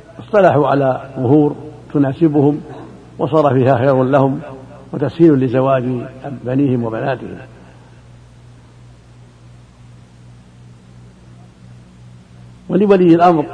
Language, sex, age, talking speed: Arabic, male, 70-89, 60 wpm